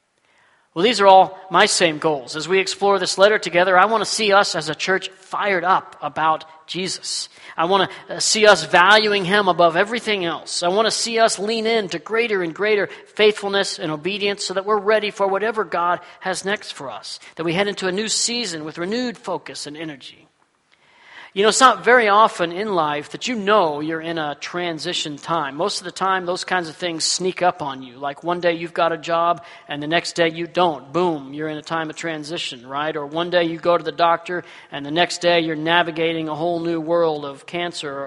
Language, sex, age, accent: English, male, 40-59, American